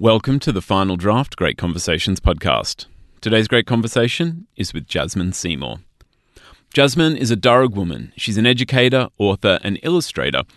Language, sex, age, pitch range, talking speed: English, male, 30-49, 90-125 Hz, 150 wpm